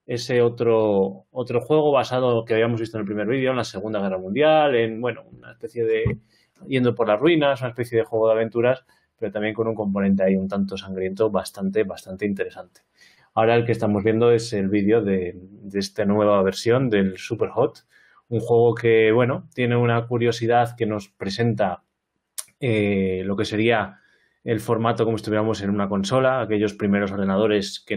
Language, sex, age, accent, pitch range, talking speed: Spanish, male, 20-39, Spanish, 100-115 Hz, 180 wpm